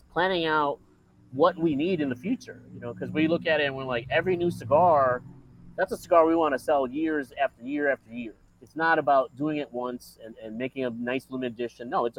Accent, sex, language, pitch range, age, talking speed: American, male, English, 125-160 Hz, 30-49, 235 wpm